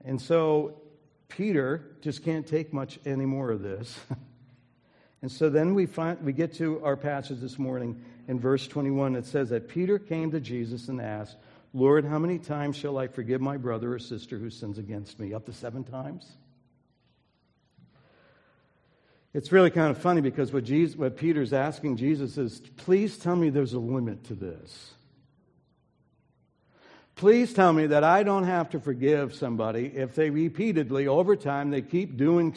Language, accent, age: English, American, 60-79